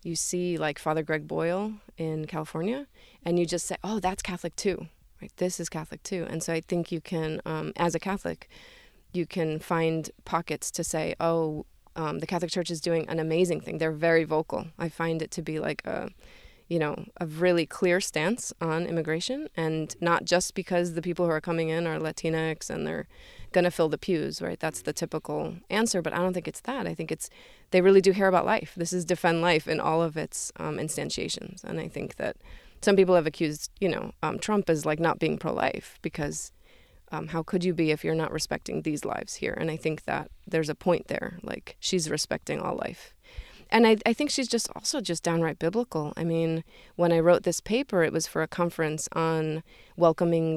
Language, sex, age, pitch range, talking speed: English, female, 20-39, 160-180 Hz, 215 wpm